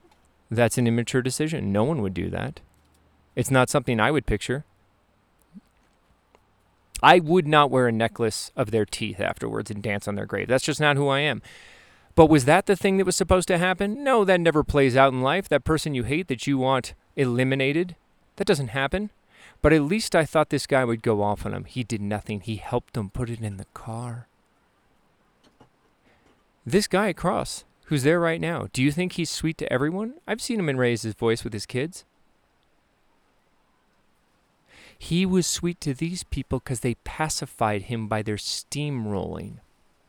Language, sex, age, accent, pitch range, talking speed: English, male, 30-49, American, 110-165 Hz, 185 wpm